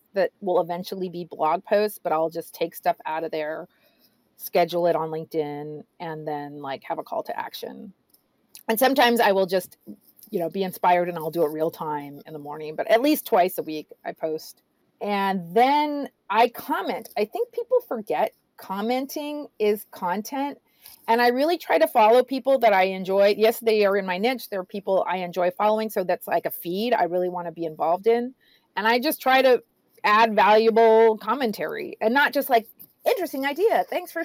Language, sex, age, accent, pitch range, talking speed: English, female, 40-59, American, 180-245 Hz, 200 wpm